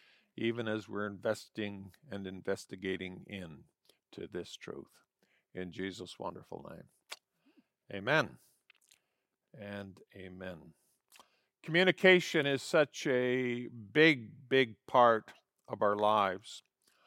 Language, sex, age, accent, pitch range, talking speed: English, male, 50-69, American, 115-160 Hz, 95 wpm